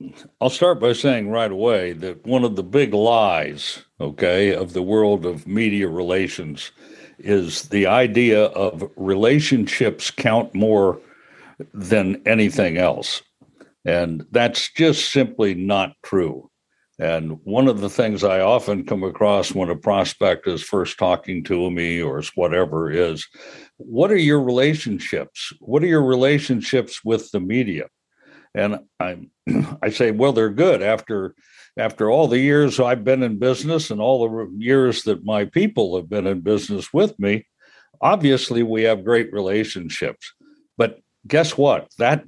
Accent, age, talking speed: American, 60-79, 150 wpm